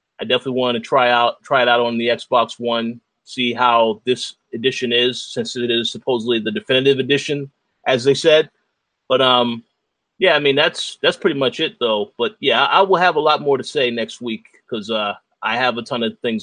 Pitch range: 115-145 Hz